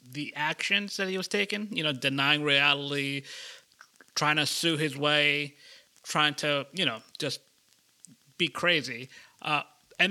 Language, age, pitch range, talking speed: English, 30-49, 150-180 Hz, 140 wpm